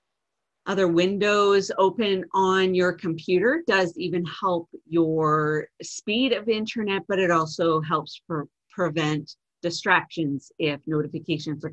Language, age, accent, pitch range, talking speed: English, 40-59, American, 160-210 Hz, 115 wpm